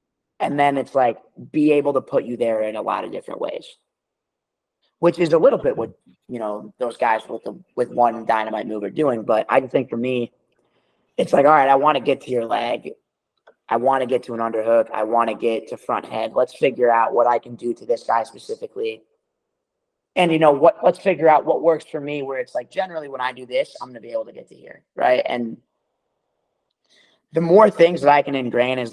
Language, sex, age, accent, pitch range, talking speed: English, male, 30-49, American, 120-180 Hz, 235 wpm